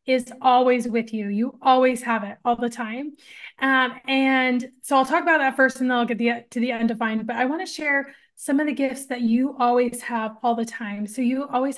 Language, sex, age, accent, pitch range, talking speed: English, female, 20-39, American, 235-275 Hz, 230 wpm